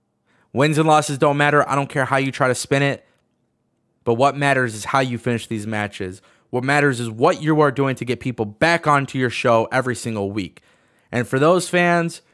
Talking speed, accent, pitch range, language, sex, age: 215 wpm, American, 115-160 Hz, English, male, 20-39